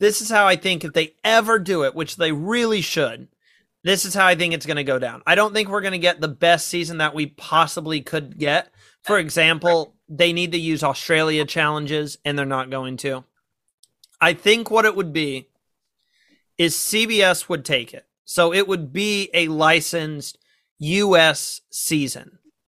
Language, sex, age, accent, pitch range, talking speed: English, male, 30-49, American, 150-175 Hz, 185 wpm